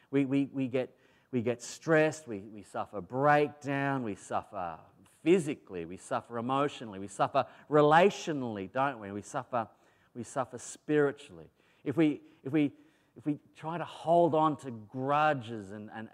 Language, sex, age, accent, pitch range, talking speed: English, male, 30-49, Australian, 115-150 Hz, 150 wpm